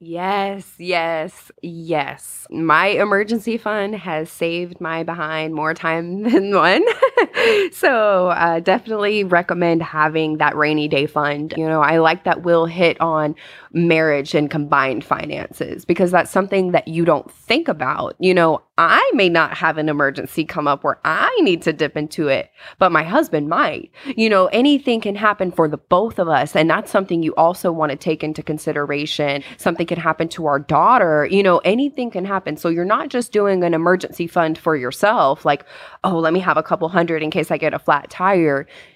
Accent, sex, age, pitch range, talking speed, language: American, female, 20-39, 155-185 Hz, 185 wpm, English